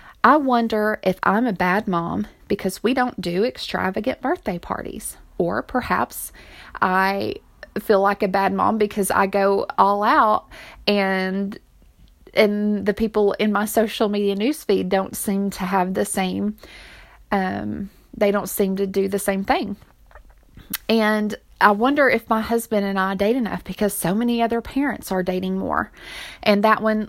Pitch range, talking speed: 190-220 Hz, 160 wpm